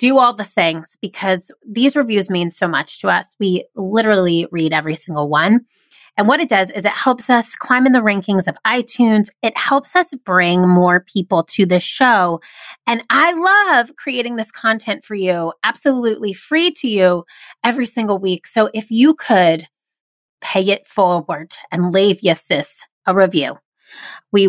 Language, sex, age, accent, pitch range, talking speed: English, female, 30-49, American, 185-240 Hz, 170 wpm